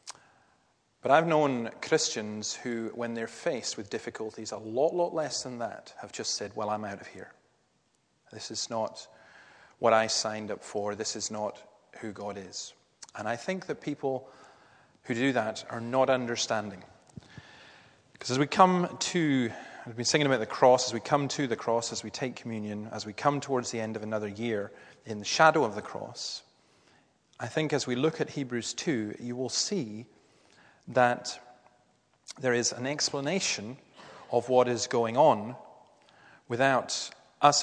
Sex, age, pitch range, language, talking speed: male, 30-49, 115-155 Hz, English, 170 wpm